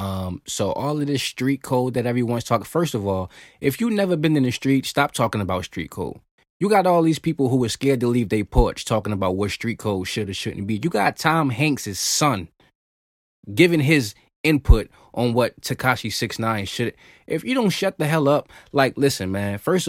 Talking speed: 210 wpm